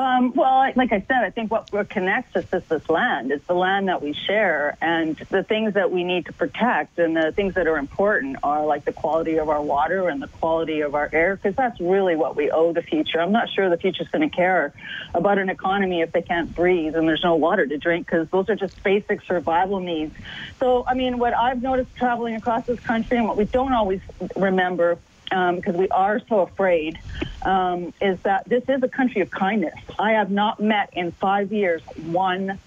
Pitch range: 175-225 Hz